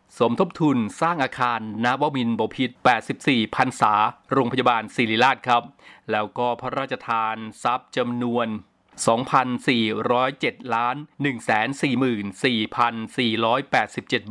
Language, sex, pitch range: Thai, male, 115-140 Hz